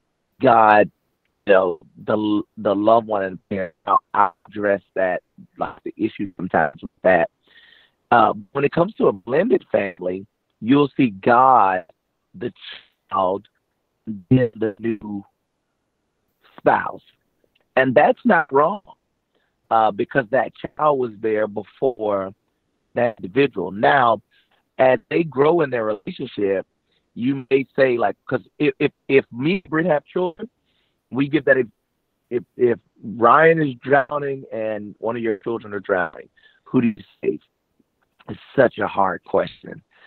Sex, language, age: male, English, 50-69